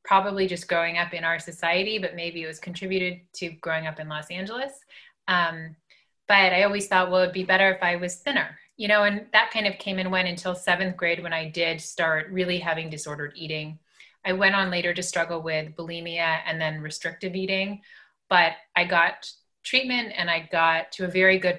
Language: English